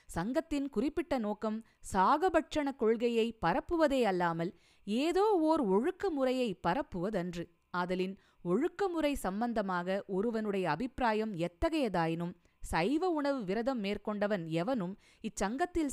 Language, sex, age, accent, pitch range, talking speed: Tamil, female, 20-39, native, 185-260 Hz, 95 wpm